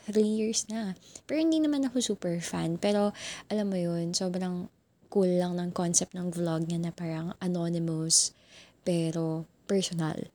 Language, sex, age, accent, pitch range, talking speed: Filipino, female, 20-39, native, 175-210 Hz, 150 wpm